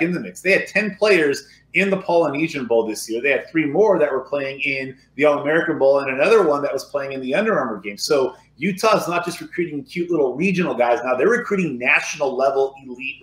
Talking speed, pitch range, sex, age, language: 235 wpm, 140-175 Hz, male, 30-49, English